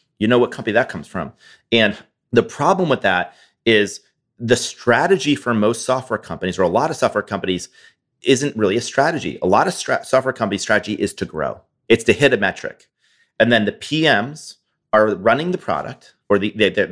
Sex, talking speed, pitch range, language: male, 190 wpm, 110-140 Hz, English